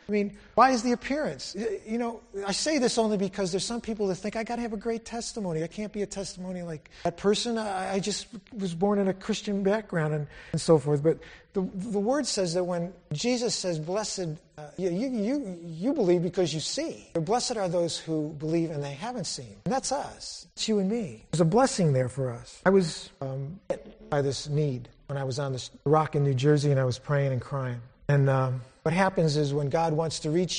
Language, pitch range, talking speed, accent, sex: English, 140-190 Hz, 230 wpm, American, male